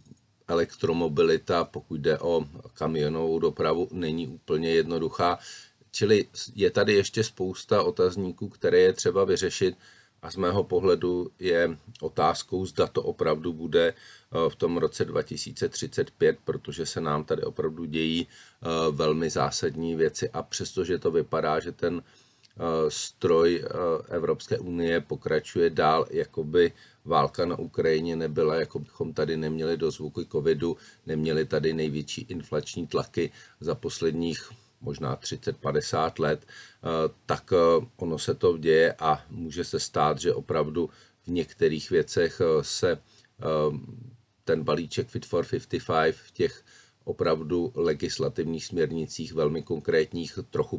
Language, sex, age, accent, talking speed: Czech, male, 40-59, native, 130 wpm